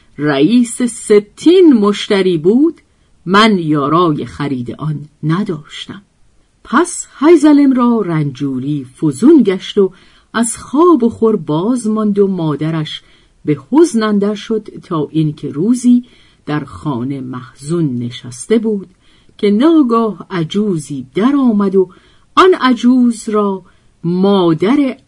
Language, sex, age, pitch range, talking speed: Persian, female, 50-69, 155-240 Hz, 110 wpm